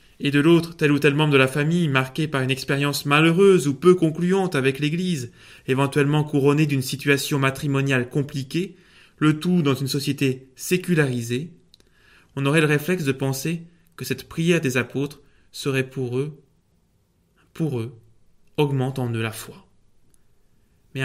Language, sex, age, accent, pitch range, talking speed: French, male, 20-39, French, 120-150 Hz, 155 wpm